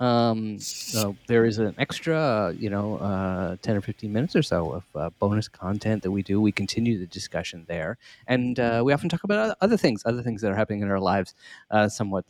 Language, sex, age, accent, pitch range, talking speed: English, male, 30-49, American, 100-125 Hz, 220 wpm